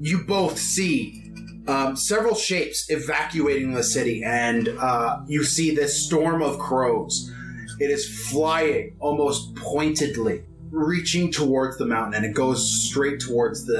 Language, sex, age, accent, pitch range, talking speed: English, male, 30-49, American, 125-155 Hz, 140 wpm